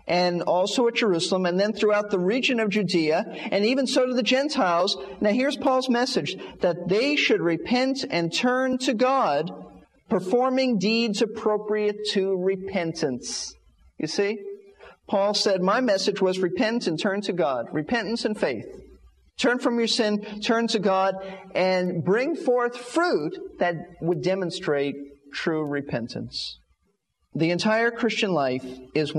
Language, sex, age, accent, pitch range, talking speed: English, male, 50-69, American, 160-225 Hz, 145 wpm